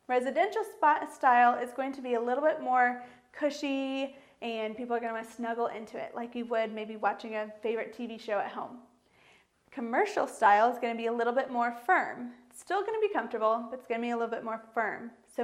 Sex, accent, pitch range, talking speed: female, American, 225-270 Hz, 230 wpm